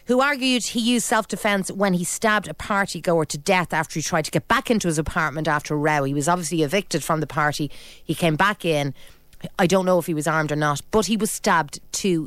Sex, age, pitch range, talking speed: female, 30-49, 165-220 Hz, 245 wpm